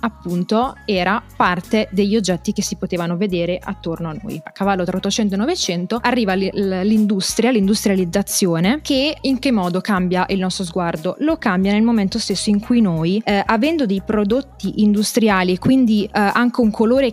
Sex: female